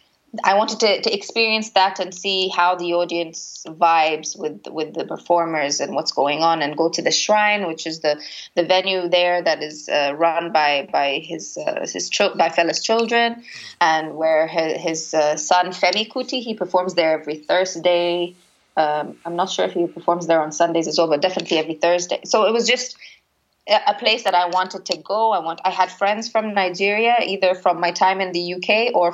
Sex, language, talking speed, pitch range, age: female, English, 200 wpm, 165-195 Hz, 20-39